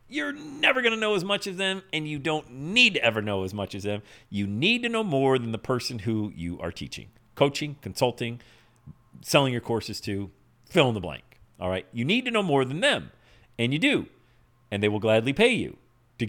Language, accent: English, American